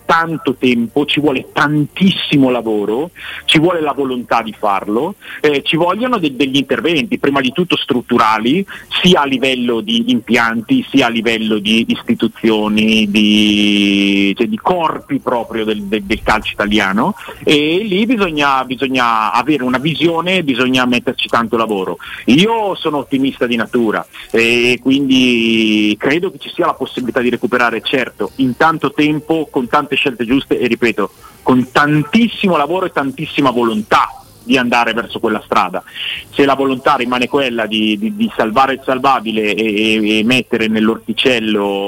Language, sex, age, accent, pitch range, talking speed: Italian, male, 40-59, native, 110-150 Hz, 150 wpm